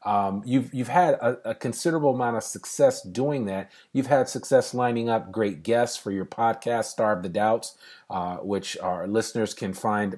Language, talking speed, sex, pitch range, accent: English, 185 wpm, male, 105-125 Hz, American